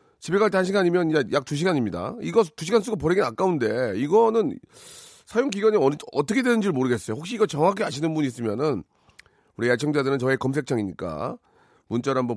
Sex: male